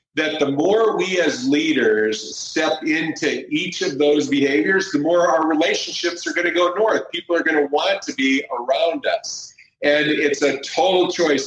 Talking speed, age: 185 wpm, 50-69